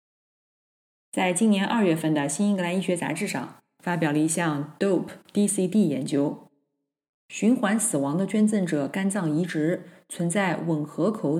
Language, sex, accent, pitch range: Chinese, female, native, 160-200 Hz